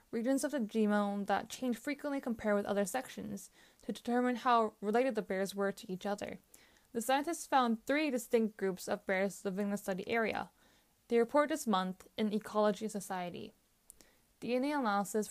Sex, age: female, 10-29